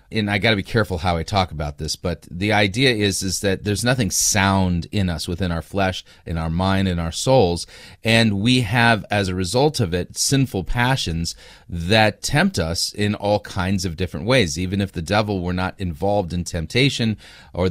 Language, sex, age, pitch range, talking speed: English, male, 30-49, 95-115 Hz, 205 wpm